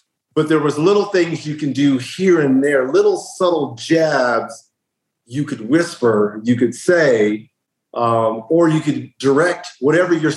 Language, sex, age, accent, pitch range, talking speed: English, male, 50-69, American, 130-170 Hz, 155 wpm